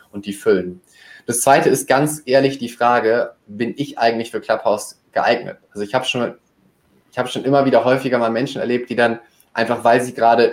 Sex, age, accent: male, 20-39, German